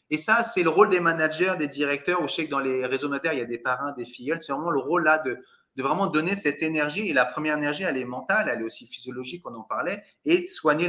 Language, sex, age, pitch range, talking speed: French, male, 30-49, 140-200 Hz, 285 wpm